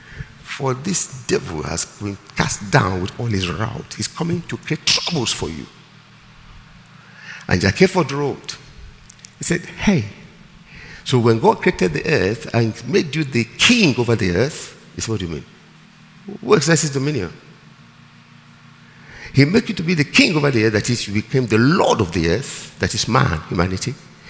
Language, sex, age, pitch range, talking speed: English, male, 50-69, 120-170 Hz, 170 wpm